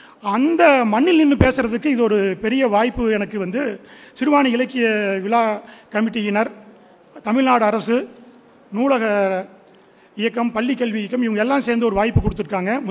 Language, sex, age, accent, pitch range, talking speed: Tamil, male, 40-59, native, 210-265 Hz, 125 wpm